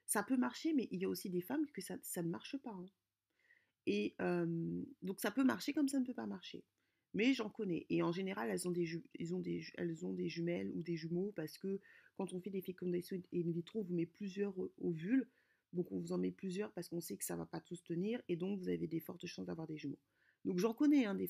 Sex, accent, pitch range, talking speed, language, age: female, French, 170-215 Hz, 270 wpm, French, 30-49